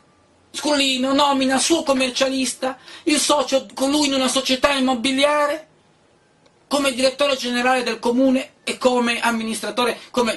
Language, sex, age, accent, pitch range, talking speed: Italian, male, 30-49, native, 215-280 Hz, 125 wpm